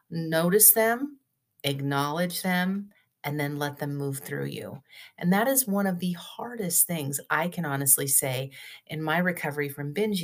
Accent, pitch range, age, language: American, 155-210 Hz, 40-59, English